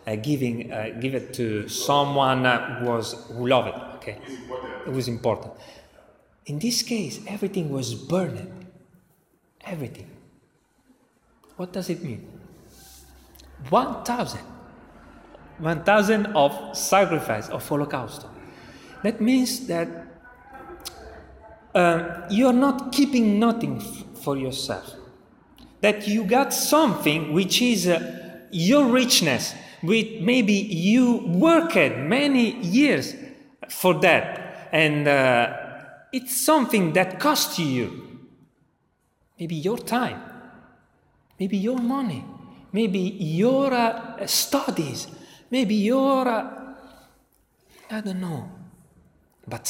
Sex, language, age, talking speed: male, Italian, 30-49, 105 wpm